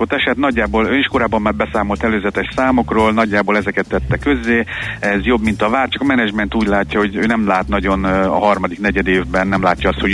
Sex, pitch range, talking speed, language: male, 95-105 Hz, 220 wpm, Hungarian